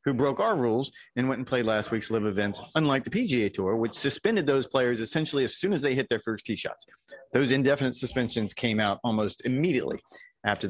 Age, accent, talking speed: 30-49, American, 215 wpm